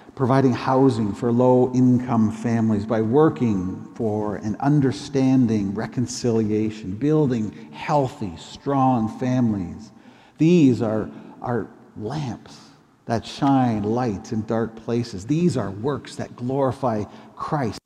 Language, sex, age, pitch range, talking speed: English, male, 50-69, 115-140 Hz, 100 wpm